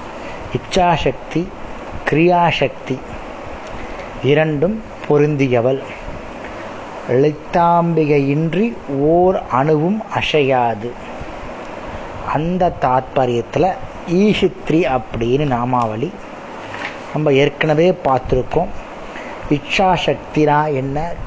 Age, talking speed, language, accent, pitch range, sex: 30-49, 50 wpm, Tamil, native, 130-165 Hz, male